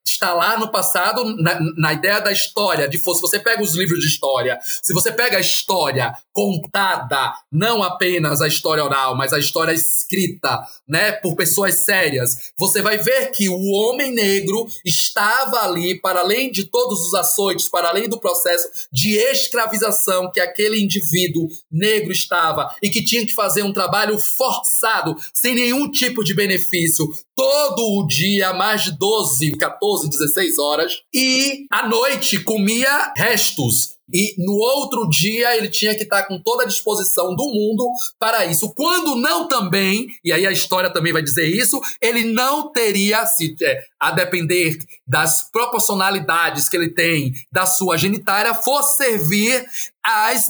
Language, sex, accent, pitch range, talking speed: Portuguese, male, Brazilian, 175-230 Hz, 160 wpm